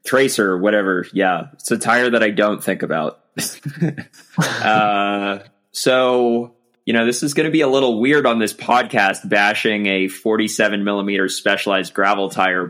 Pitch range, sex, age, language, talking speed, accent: 95-125 Hz, male, 20-39, English, 155 wpm, American